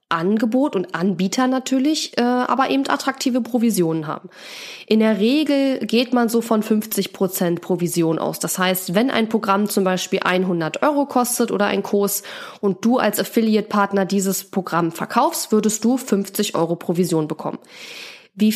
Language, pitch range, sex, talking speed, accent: German, 185-245 Hz, female, 150 wpm, German